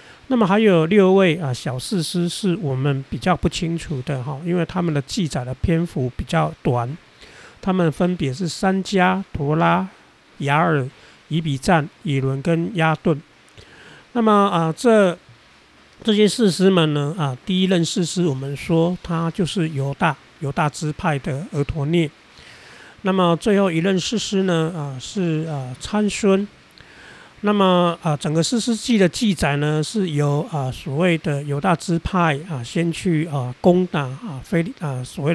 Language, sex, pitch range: Chinese, male, 145-185 Hz